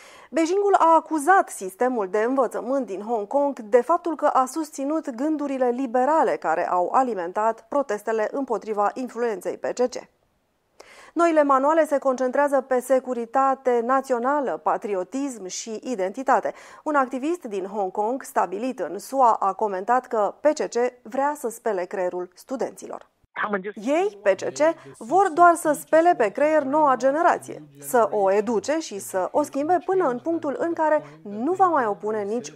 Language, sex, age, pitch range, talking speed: Romanian, female, 30-49, 210-280 Hz, 140 wpm